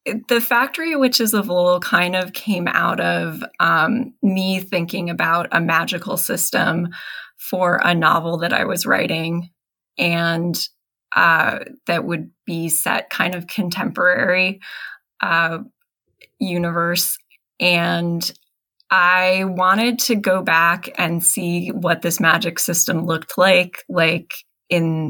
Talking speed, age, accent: 125 wpm, 20-39, American